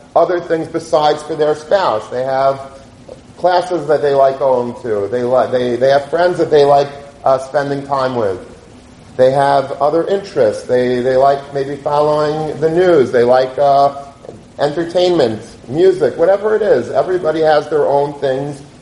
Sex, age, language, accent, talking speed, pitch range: male, 40-59, English, American, 165 wpm, 135-175 Hz